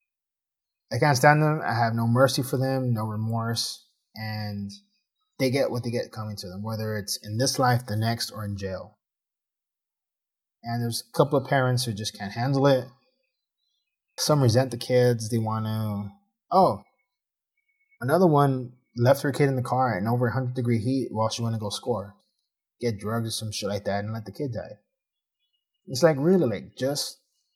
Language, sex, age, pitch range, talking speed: English, male, 20-39, 115-145 Hz, 185 wpm